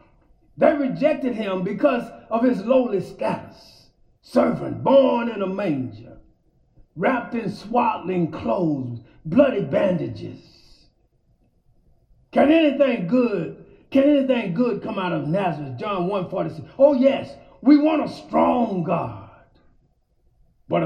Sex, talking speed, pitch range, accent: male, 110 wpm, 175-255 Hz, American